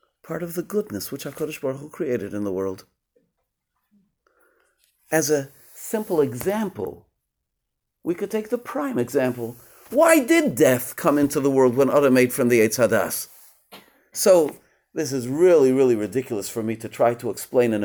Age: 50-69